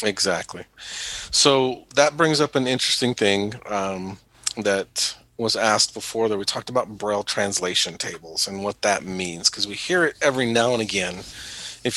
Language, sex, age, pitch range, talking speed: English, male, 40-59, 100-120 Hz, 165 wpm